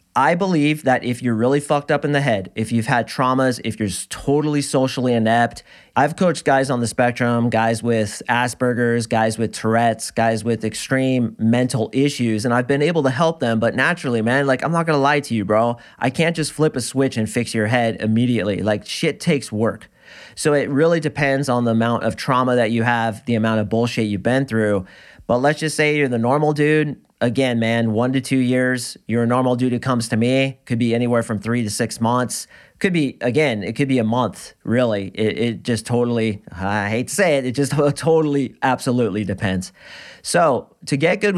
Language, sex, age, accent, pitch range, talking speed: English, male, 30-49, American, 115-135 Hz, 210 wpm